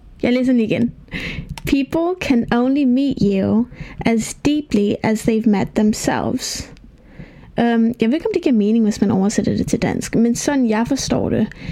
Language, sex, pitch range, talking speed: Danish, female, 215-255 Hz, 170 wpm